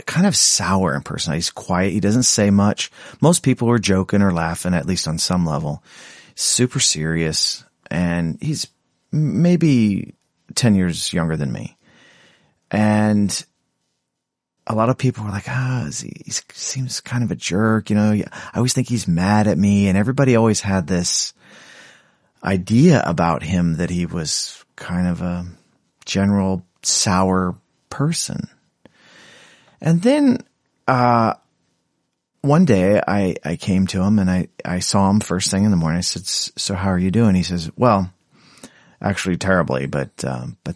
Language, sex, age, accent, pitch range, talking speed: English, male, 30-49, American, 90-120 Hz, 160 wpm